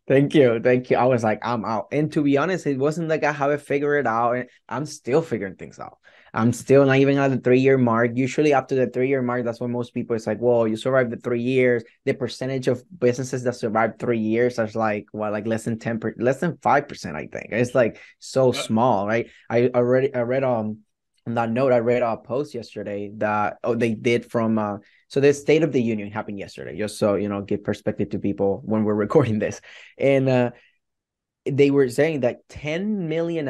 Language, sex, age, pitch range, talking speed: English, male, 20-39, 110-130 Hz, 230 wpm